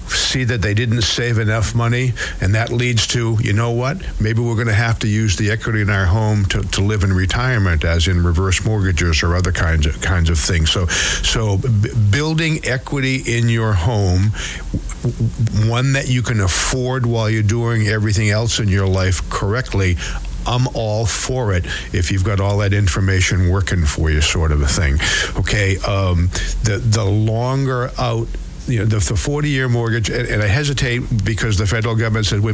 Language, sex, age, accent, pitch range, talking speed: English, male, 60-79, American, 95-125 Hz, 190 wpm